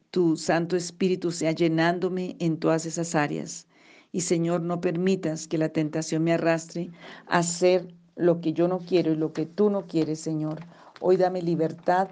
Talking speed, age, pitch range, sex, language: 175 wpm, 50-69, 155-175 Hz, female, Spanish